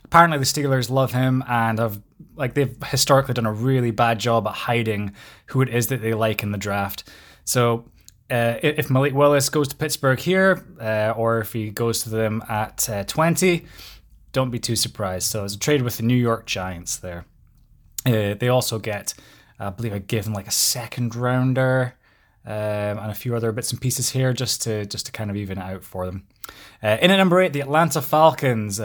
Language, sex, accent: English, male, British